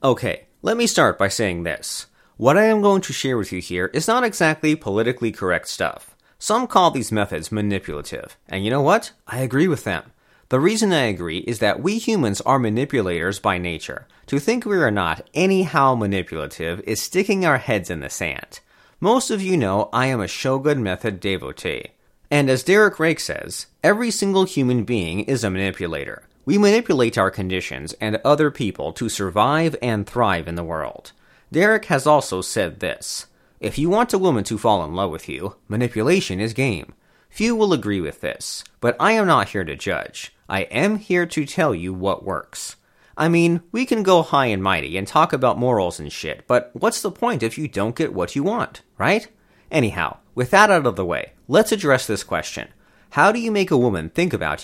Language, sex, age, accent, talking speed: English, male, 30-49, American, 200 wpm